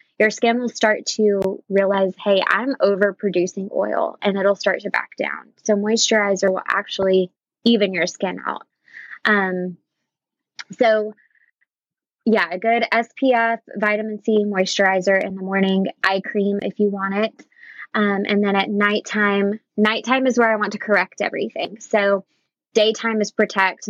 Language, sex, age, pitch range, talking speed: English, female, 20-39, 195-215 Hz, 150 wpm